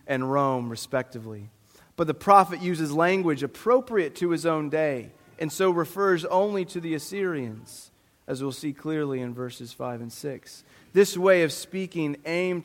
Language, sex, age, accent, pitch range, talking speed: English, male, 30-49, American, 125-170 Hz, 160 wpm